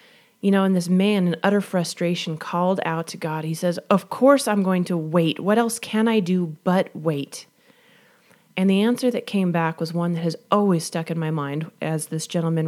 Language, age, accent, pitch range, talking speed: English, 30-49, American, 160-200 Hz, 215 wpm